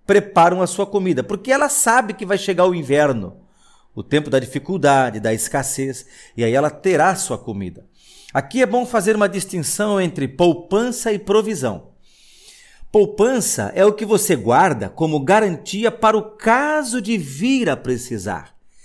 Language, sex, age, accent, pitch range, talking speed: Portuguese, male, 50-69, Brazilian, 150-220 Hz, 155 wpm